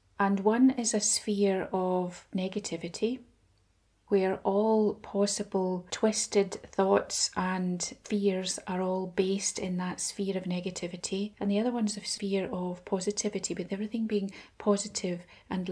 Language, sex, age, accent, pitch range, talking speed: English, female, 30-49, British, 180-210 Hz, 135 wpm